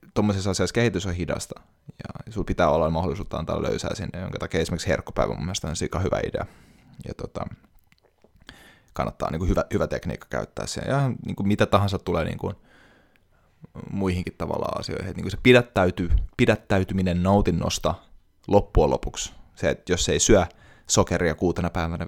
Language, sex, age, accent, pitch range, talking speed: Finnish, male, 20-39, native, 85-100 Hz, 160 wpm